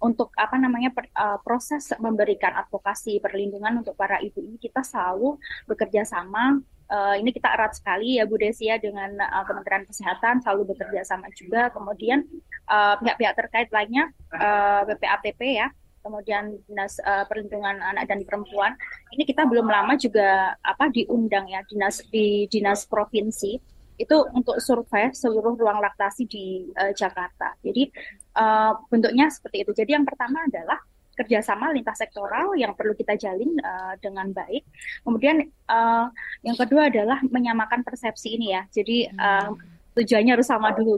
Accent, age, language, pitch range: native, 20-39, Indonesian, 205-245 Hz